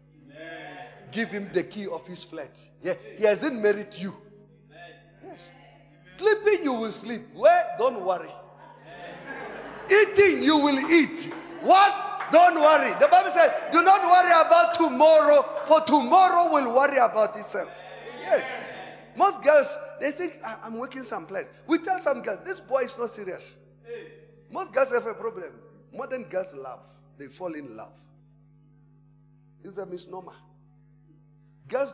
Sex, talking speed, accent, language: male, 140 wpm, South African, English